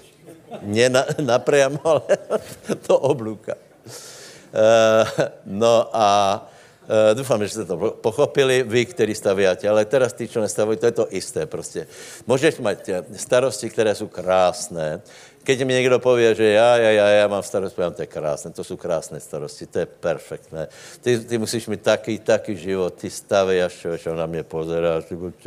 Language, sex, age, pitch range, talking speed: Slovak, male, 60-79, 100-135 Hz, 165 wpm